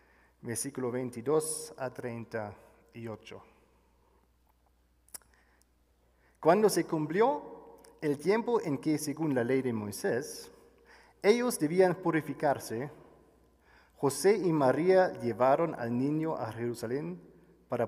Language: Spanish